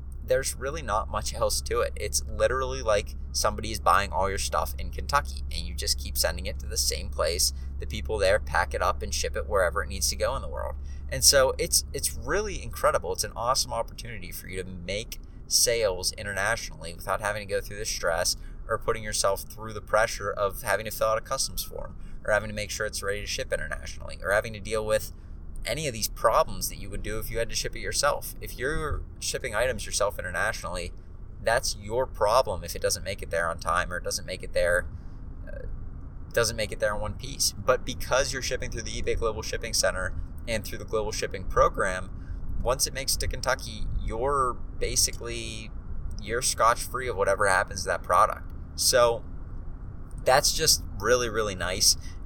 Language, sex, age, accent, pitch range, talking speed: English, male, 30-49, American, 75-110 Hz, 210 wpm